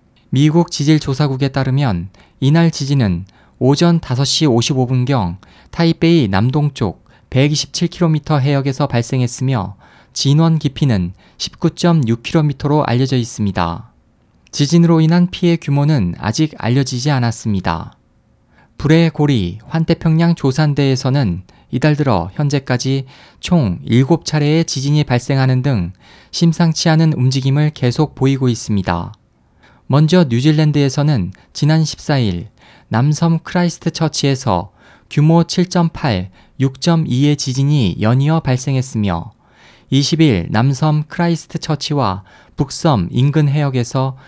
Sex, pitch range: male, 125-155 Hz